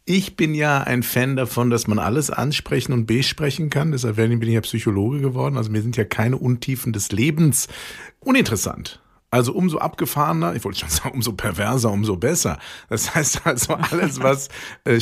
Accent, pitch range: German, 120-185 Hz